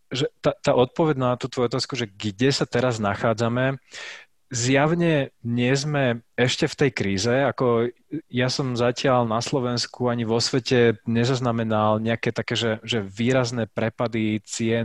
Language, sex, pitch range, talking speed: Slovak, male, 115-130 Hz, 150 wpm